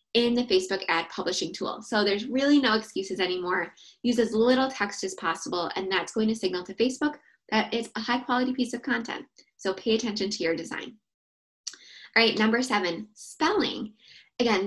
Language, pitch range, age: English, 190-240 Hz, 10-29